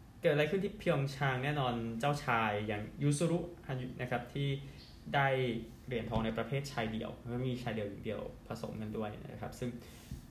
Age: 20-39